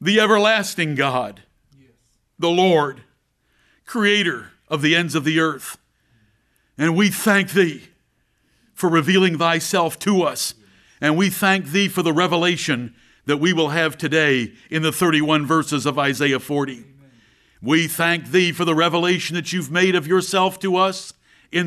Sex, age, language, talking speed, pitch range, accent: male, 60-79, English, 150 wpm, 150-195 Hz, American